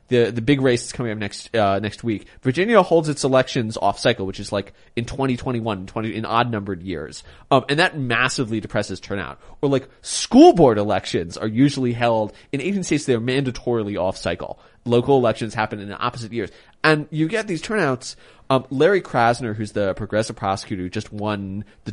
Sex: male